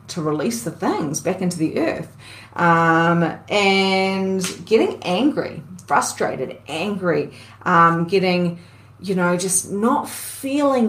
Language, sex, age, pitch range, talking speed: English, female, 30-49, 170-225 Hz, 115 wpm